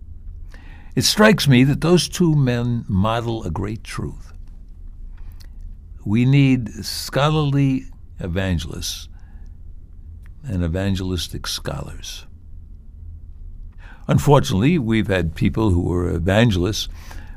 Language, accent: English, American